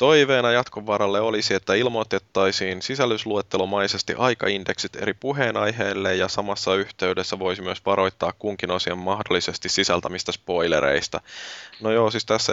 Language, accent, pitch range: Finnish, native, 90-100 Hz